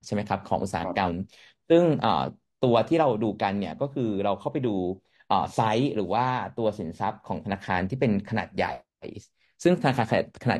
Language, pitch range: Thai, 100-130 Hz